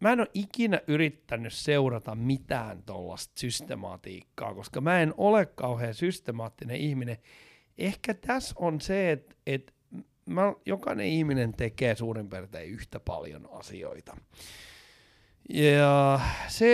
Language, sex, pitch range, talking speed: Finnish, male, 115-150 Hz, 115 wpm